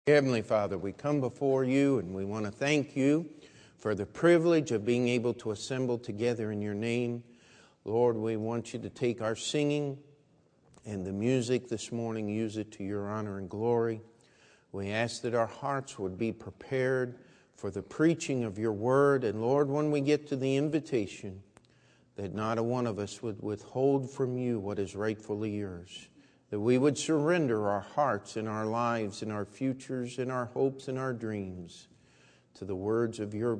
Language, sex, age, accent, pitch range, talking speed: English, male, 50-69, American, 105-130 Hz, 185 wpm